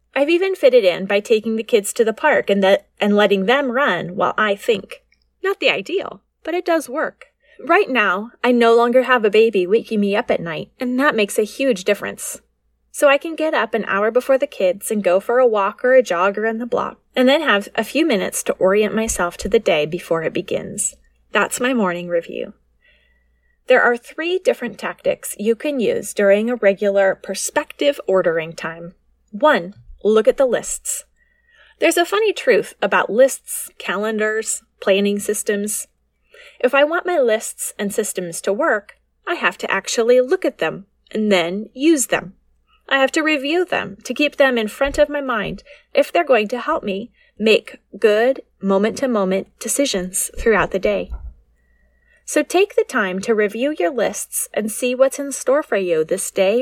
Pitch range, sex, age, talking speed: 200-300 Hz, female, 20-39, 190 wpm